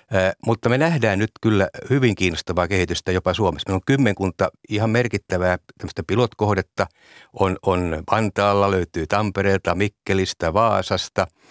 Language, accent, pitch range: Finnish, native, 95-115 Hz